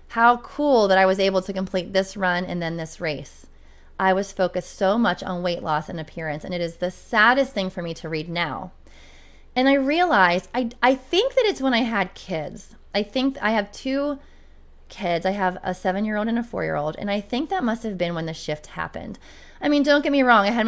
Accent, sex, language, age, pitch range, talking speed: American, female, English, 20-39, 170-235 Hz, 240 wpm